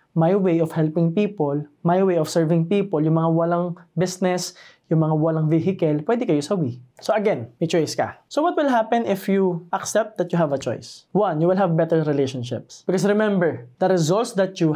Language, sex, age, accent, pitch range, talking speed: Filipino, male, 20-39, native, 155-210 Hz, 205 wpm